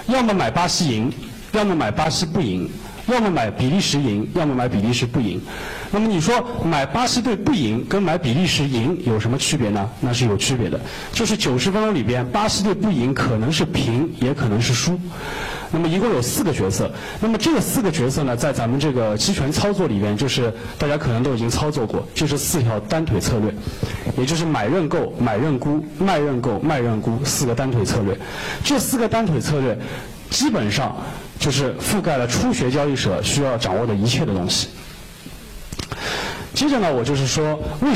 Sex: male